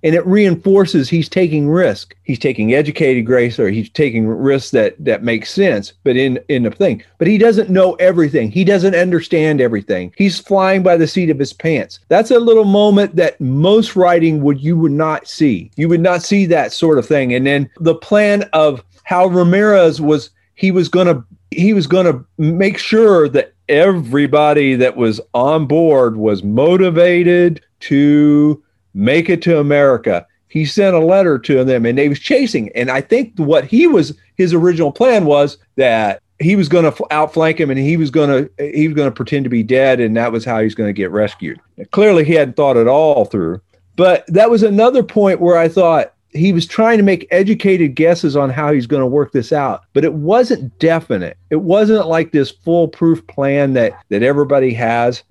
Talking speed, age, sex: 200 wpm, 40-59, male